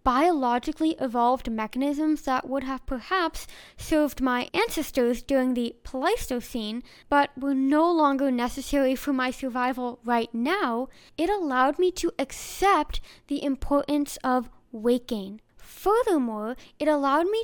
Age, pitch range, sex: 10-29, 250-320 Hz, female